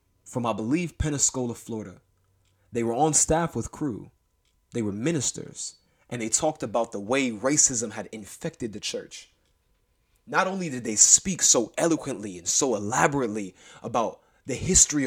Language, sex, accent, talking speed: English, male, American, 150 wpm